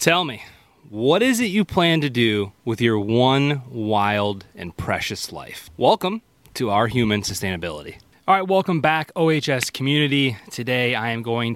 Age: 30-49